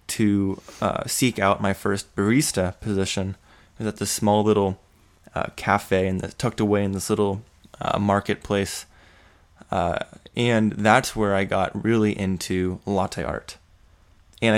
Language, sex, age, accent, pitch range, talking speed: English, male, 20-39, American, 95-110 Hz, 145 wpm